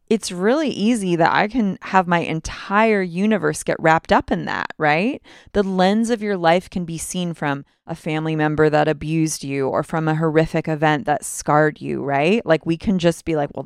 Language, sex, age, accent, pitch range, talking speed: English, female, 30-49, American, 155-210 Hz, 205 wpm